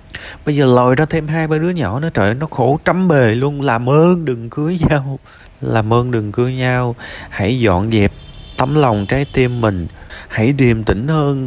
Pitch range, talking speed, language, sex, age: 95-150 Hz, 200 wpm, Vietnamese, male, 20-39